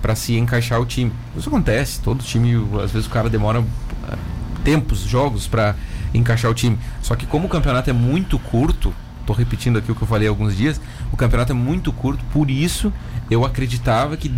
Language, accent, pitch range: Portuguese, Brazilian, 115-145 Hz